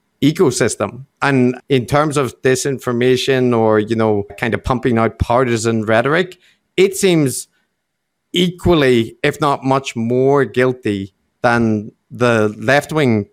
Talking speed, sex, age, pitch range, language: 115 wpm, male, 50-69, 110-140 Hz, English